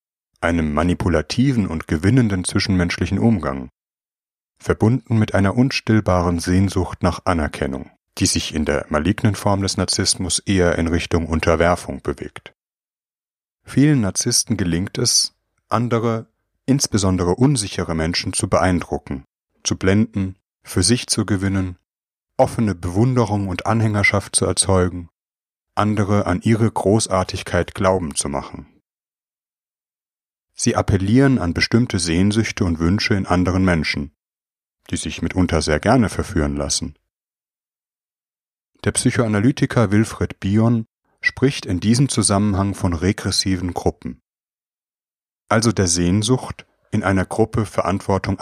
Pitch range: 85-110 Hz